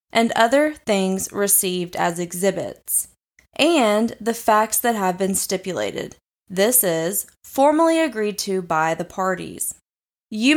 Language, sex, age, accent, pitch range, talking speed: English, female, 20-39, American, 185-230 Hz, 125 wpm